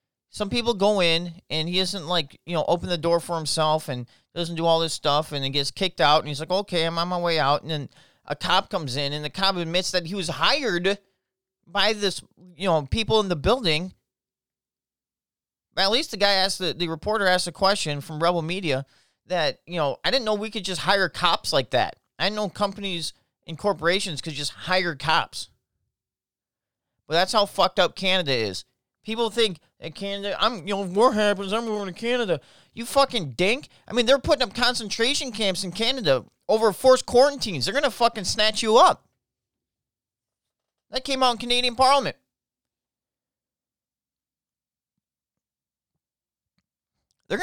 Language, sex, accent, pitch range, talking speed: English, male, American, 155-210 Hz, 180 wpm